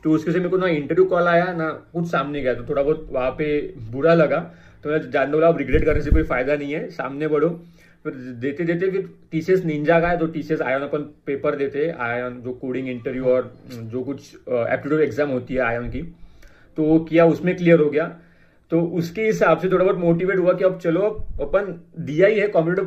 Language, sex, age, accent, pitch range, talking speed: Hindi, male, 30-49, native, 145-175 Hz, 215 wpm